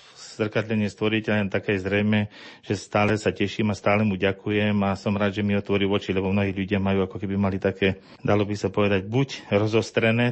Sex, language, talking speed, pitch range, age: male, Slovak, 200 wpm, 95-115 Hz, 40-59